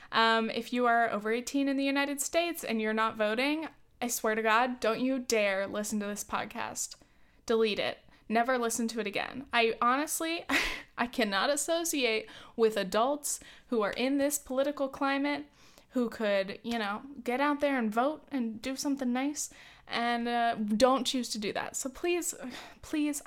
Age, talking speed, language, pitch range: 10-29, 175 wpm, English, 220-275 Hz